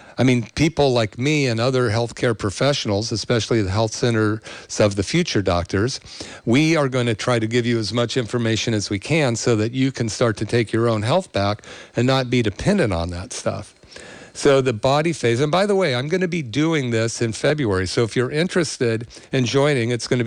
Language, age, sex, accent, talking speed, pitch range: English, 50-69, male, American, 220 wpm, 115-130 Hz